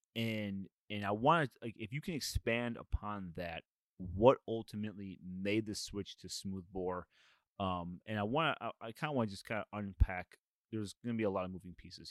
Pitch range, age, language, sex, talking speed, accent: 95-120 Hz, 30-49, English, male, 215 wpm, American